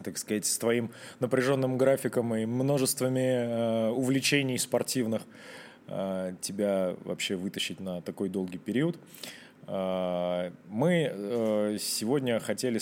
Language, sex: Russian, male